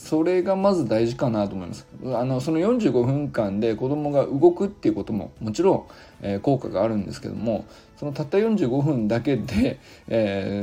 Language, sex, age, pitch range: Japanese, male, 20-39, 105-150 Hz